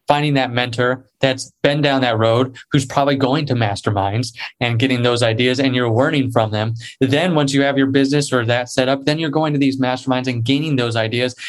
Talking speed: 220 wpm